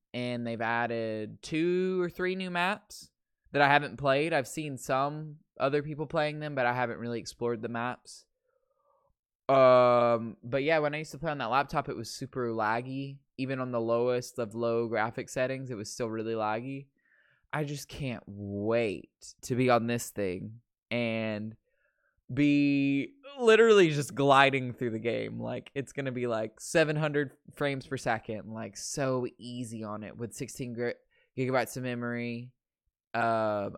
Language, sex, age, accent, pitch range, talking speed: English, male, 20-39, American, 110-135 Hz, 160 wpm